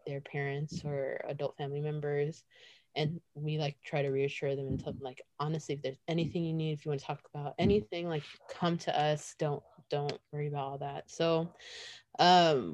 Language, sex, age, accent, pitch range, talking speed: English, female, 20-39, American, 150-210 Hz, 200 wpm